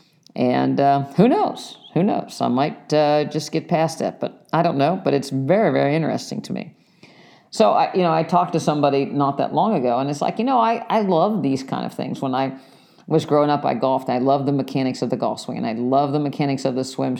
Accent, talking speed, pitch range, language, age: American, 250 wpm, 135-170 Hz, English, 50-69